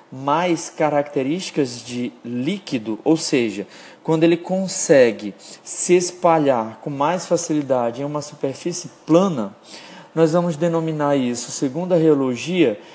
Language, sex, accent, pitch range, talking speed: Portuguese, male, Brazilian, 140-170 Hz, 115 wpm